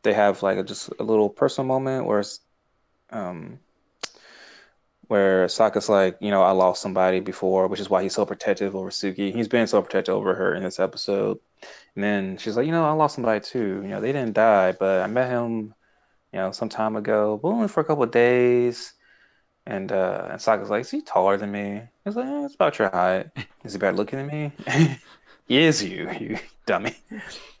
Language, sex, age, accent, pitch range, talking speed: English, male, 20-39, American, 100-130 Hz, 210 wpm